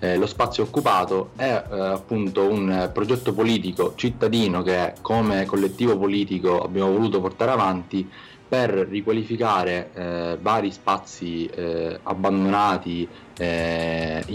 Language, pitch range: Italian, 90-100 Hz